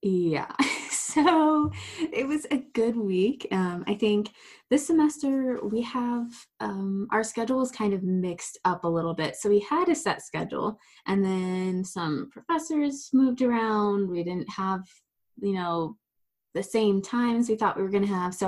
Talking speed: 170 wpm